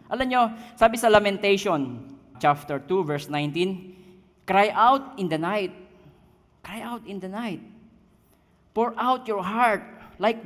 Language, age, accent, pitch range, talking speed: Filipino, 40-59, native, 185-235 Hz, 140 wpm